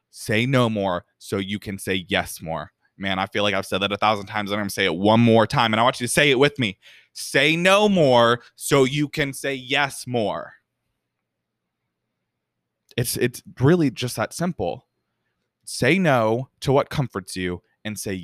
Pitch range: 105-135 Hz